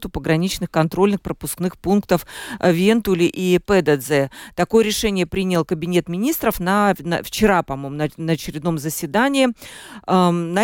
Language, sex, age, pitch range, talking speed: Russian, female, 40-59, 175-220 Hz, 125 wpm